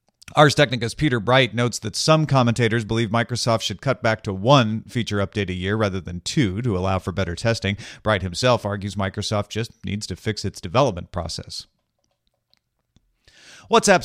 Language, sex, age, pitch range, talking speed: English, male, 40-59, 105-130 Hz, 165 wpm